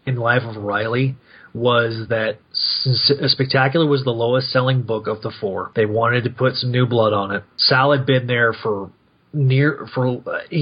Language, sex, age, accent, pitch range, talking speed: English, male, 30-49, American, 120-150 Hz, 180 wpm